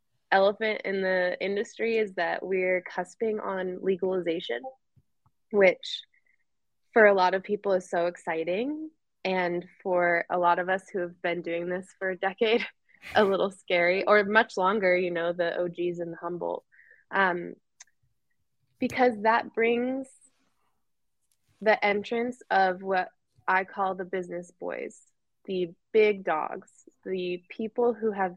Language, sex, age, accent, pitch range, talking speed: English, female, 20-39, American, 180-225 Hz, 135 wpm